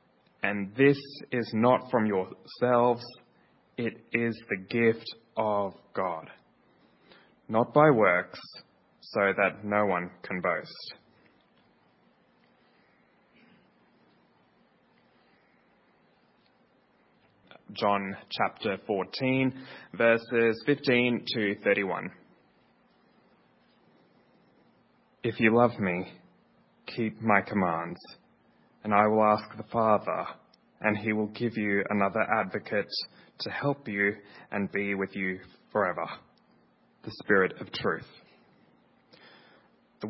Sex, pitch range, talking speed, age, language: male, 100-120 Hz, 90 wpm, 20-39, English